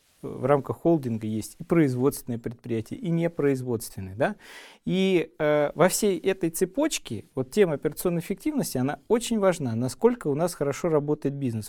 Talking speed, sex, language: 135 wpm, male, Russian